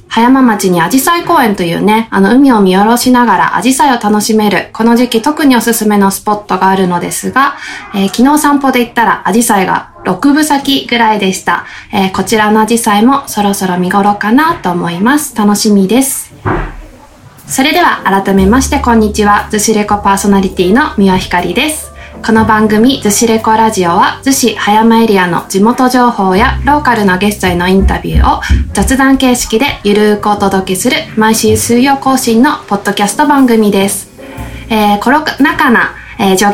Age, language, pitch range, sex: 20-39, Japanese, 200-260 Hz, female